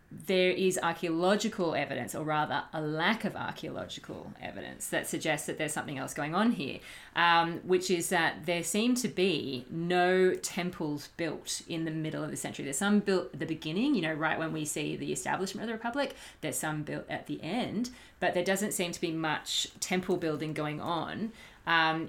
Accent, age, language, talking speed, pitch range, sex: Australian, 30-49, English, 195 wpm, 155-185 Hz, female